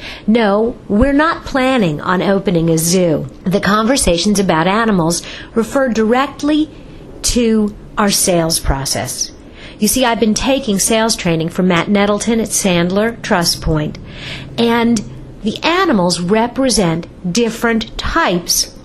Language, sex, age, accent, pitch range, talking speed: English, female, 50-69, American, 185-245 Hz, 120 wpm